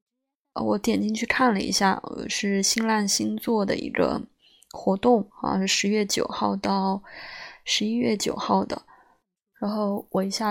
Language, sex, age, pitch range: Chinese, female, 20-39, 195-220 Hz